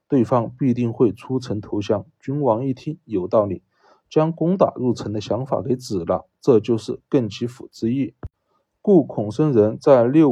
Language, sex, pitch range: Chinese, male, 110-145 Hz